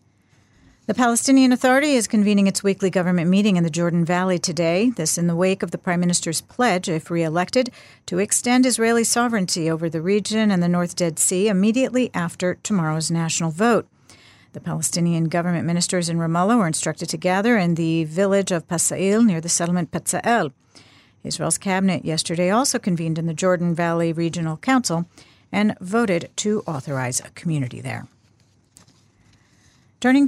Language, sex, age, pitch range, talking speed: English, female, 50-69, 165-215 Hz, 160 wpm